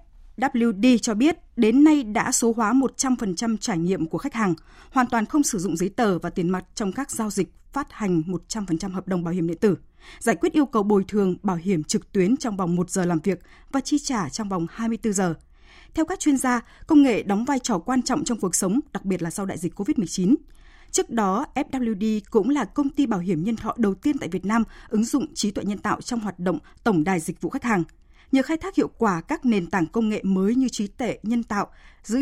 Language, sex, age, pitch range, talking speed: Vietnamese, female, 20-39, 185-255 Hz, 240 wpm